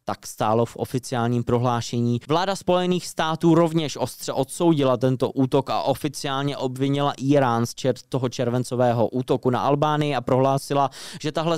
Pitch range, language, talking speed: 120-160 Hz, Czech, 140 wpm